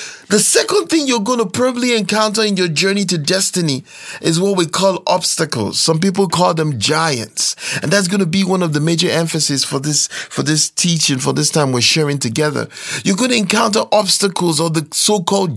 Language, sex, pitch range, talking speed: English, male, 170-225 Hz, 200 wpm